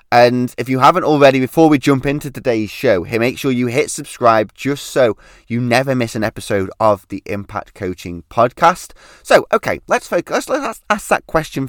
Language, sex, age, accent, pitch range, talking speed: English, male, 20-39, British, 105-135 Hz, 185 wpm